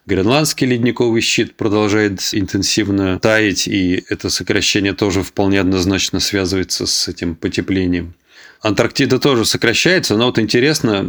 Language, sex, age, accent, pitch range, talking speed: Russian, male, 20-39, native, 95-110 Hz, 120 wpm